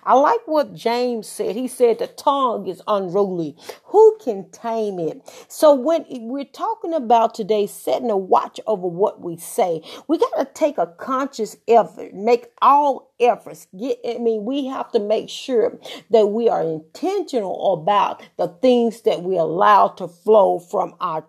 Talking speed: 165 wpm